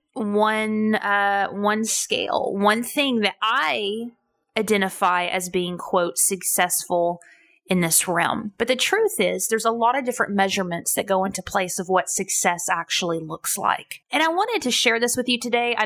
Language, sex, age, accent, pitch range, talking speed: English, female, 20-39, American, 190-250 Hz, 175 wpm